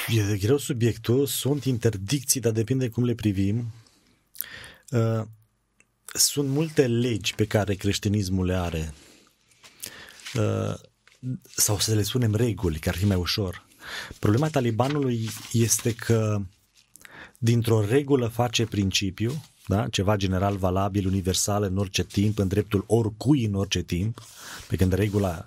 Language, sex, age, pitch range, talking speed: Romanian, male, 30-49, 100-115 Hz, 130 wpm